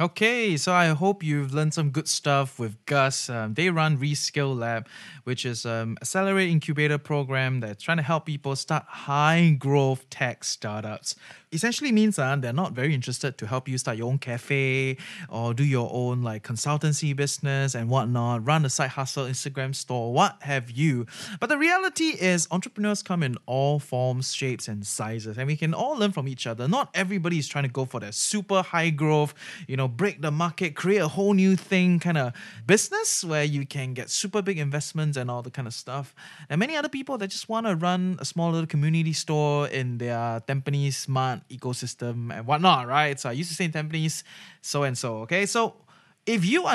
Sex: male